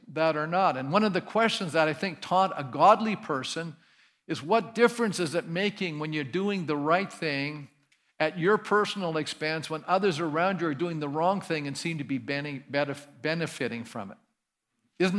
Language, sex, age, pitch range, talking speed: English, male, 50-69, 150-200 Hz, 190 wpm